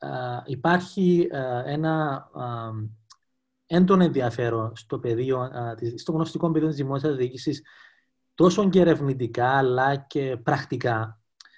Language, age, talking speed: Greek, 30-49, 115 wpm